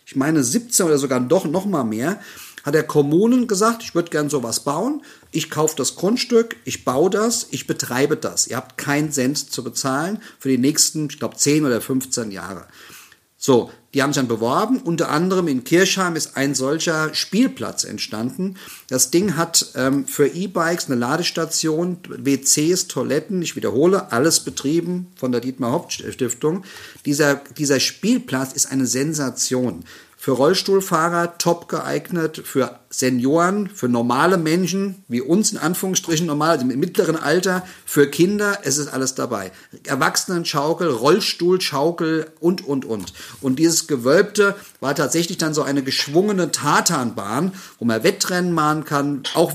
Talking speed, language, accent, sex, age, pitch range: 150 wpm, German, German, male, 50-69, 135-180 Hz